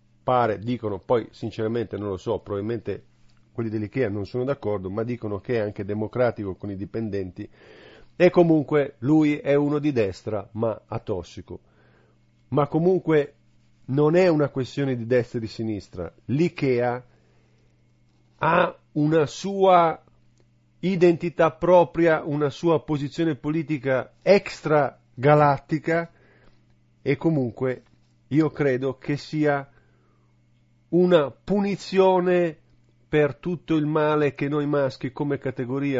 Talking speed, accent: 120 wpm, native